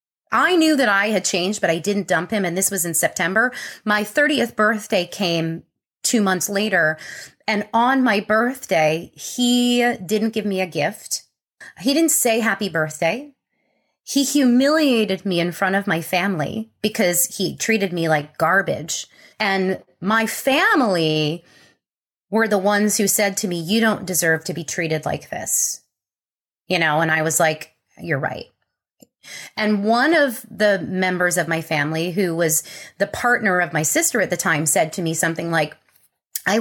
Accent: American